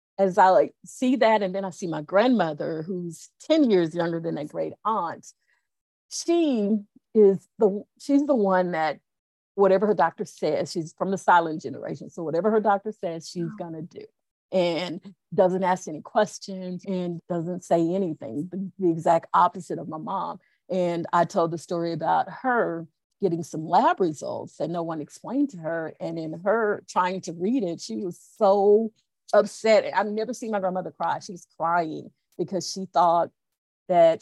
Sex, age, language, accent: female, 40-59, English, American